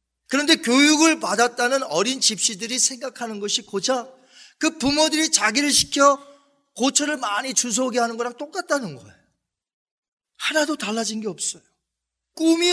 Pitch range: 195-280 Hz